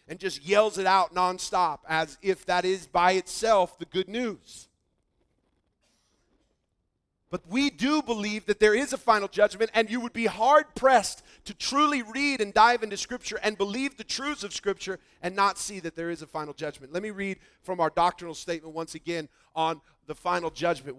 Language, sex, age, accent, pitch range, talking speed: English, male, 40-59, American, 170-235 Hz, 190 wpm